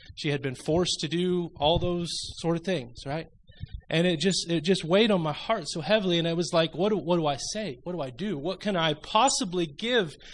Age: 20-39